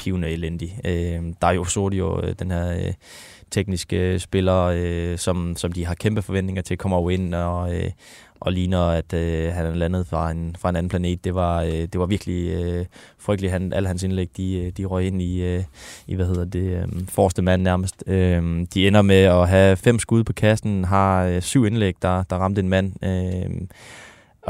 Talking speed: 200 wpm